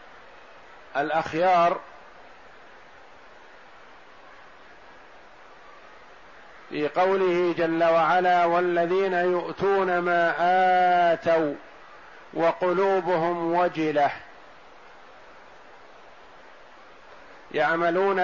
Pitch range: 170-185 Hz